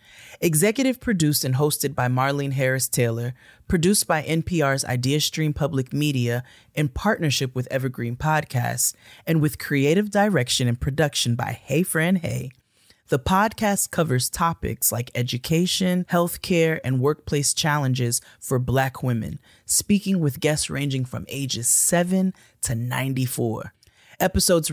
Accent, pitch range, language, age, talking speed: American, 125-165 Hz, English, 20-39, 125 wpm